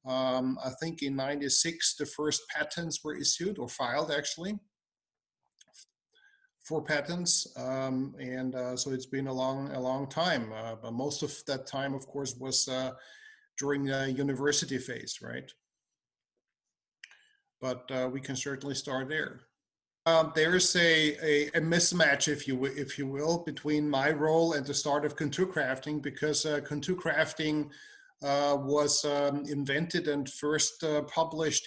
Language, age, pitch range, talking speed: English, 50-69, 140-170 Hz, 155 wpm